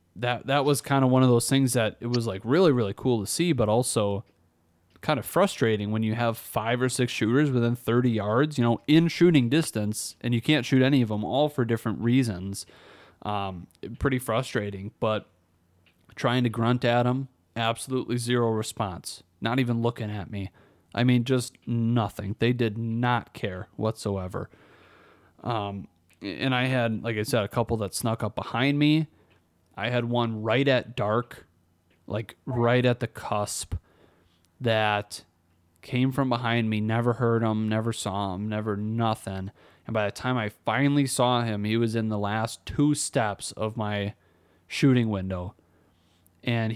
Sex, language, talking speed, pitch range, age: male, English, 170 wpm, 100-125 Hz, 30-49